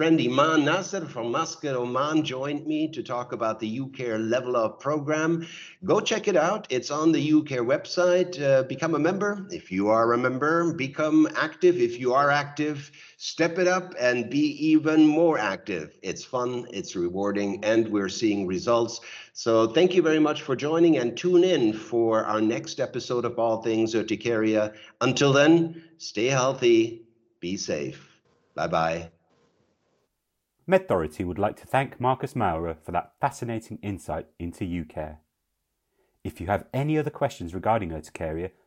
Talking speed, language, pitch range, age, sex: 160 wpm, English, 105-155 Hz, 60-79, male